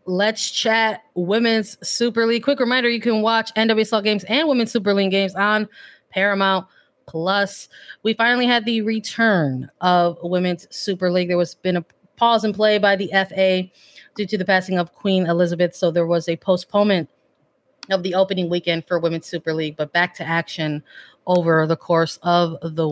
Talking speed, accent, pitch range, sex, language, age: 180 wpm, American, 175-210 Hz, female, English, 20-39